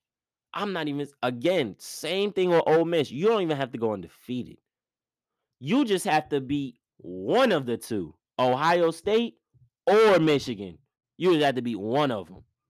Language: English